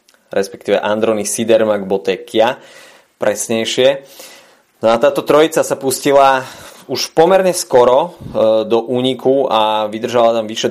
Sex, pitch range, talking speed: male, 105-115 Hz, 110 wpm